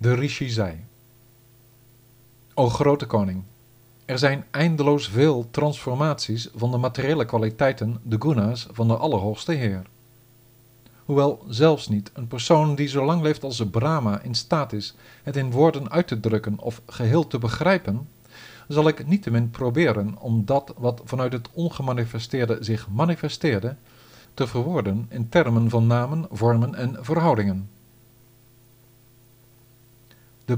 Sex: male